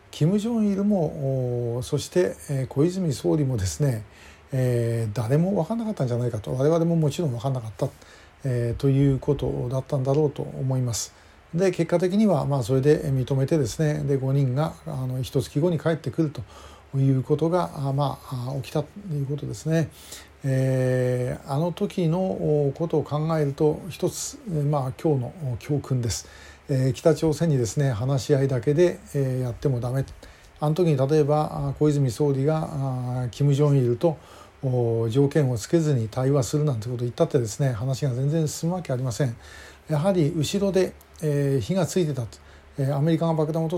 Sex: male